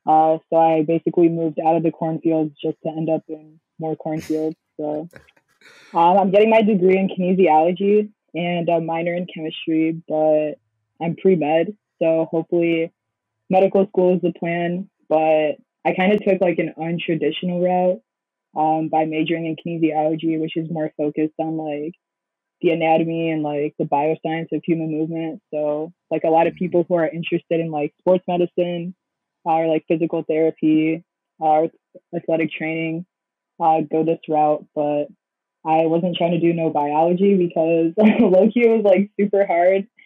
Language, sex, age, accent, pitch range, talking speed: English, female, 20-39, American, 155-180 Hz, 160 wpm